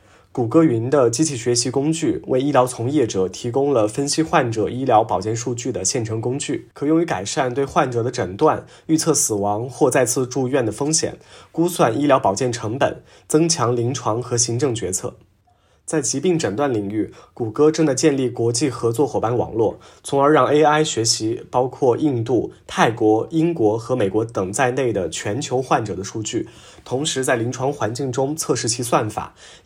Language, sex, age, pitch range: Chinese, male, 20-39, 110-150 Hz